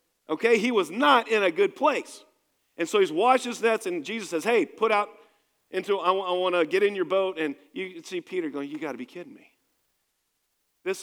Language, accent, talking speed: English, American, 225 wpm